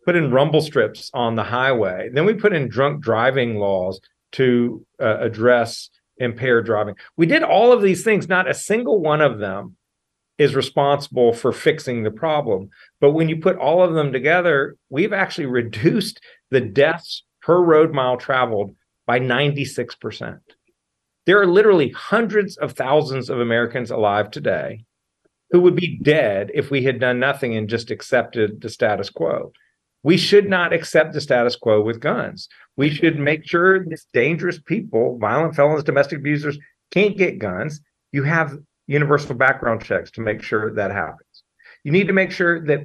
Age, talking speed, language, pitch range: 40-59, 170 wpm, English, 120-165 Hz